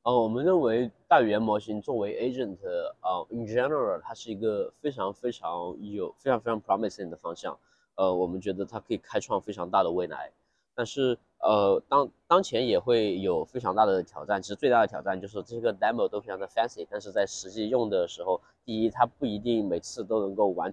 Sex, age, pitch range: male, 20-39, 95-130 Hz